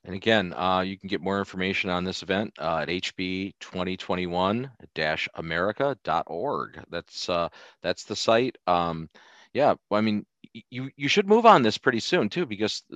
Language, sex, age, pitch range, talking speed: English, male, 40-59, 90-130 Hz, 155 wpm